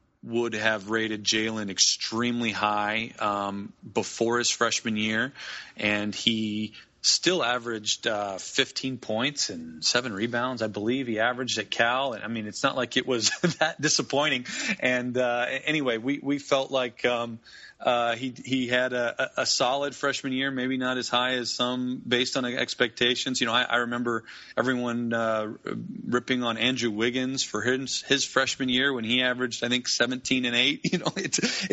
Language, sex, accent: English, male, American